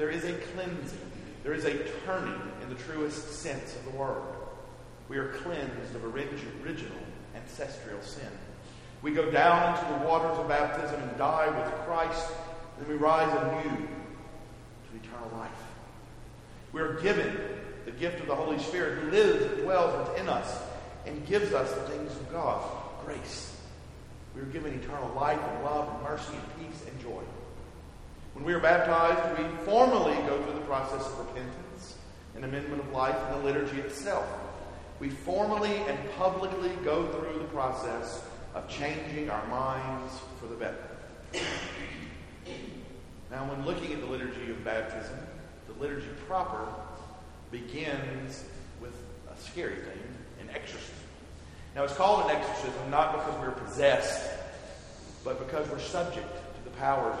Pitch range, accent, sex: 115-165 Hz, American, male